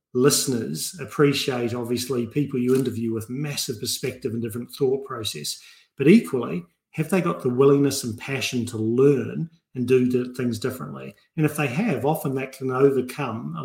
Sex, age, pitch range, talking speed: male, 40-59, 125-150 Hz, 165 wpm